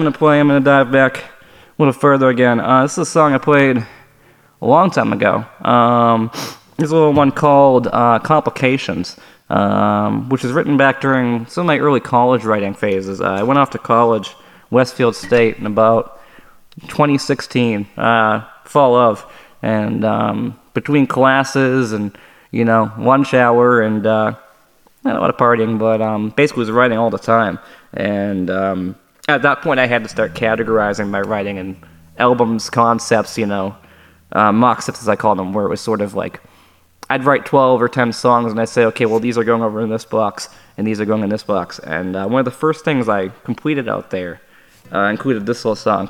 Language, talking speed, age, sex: English, 200 wpm, 20-39, male